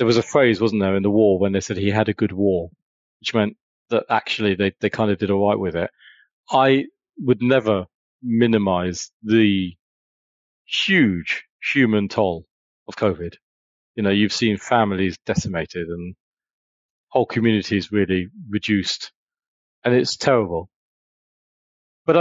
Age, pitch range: 30-49, 100-120 Hz